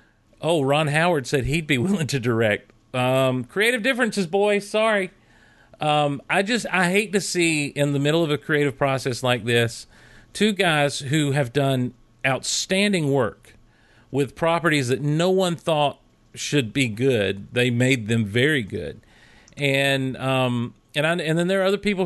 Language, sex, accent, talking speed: English, male, American, 165 wpm